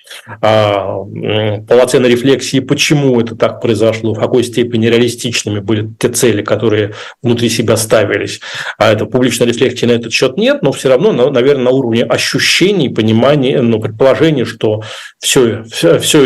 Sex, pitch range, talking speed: male, 115-135 Hz, 140 wpm